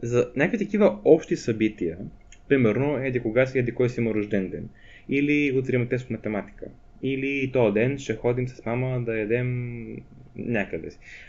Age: 20-39